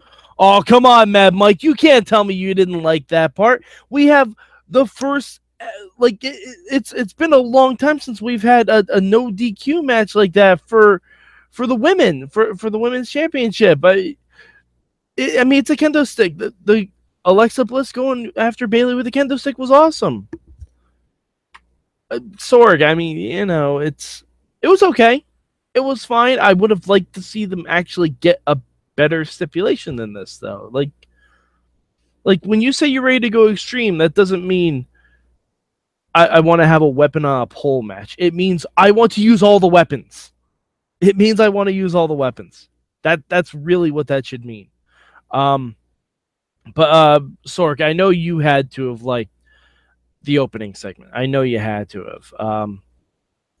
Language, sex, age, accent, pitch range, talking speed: English, male, 20-39, American, 150-240 Hz, 185 wpm